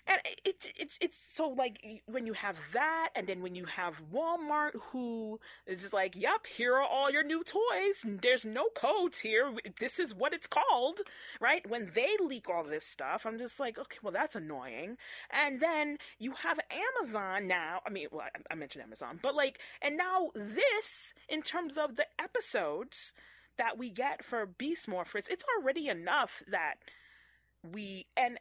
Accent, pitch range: American, 220-335 Hz